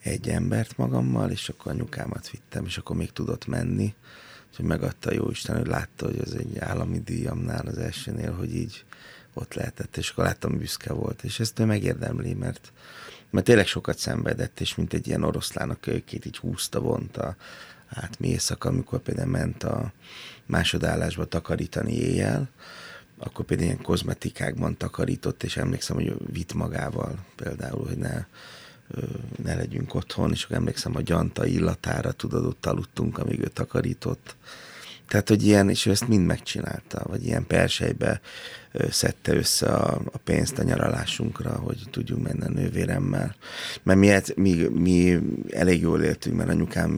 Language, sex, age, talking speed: Hungarian, male, 30-49, 155 wpm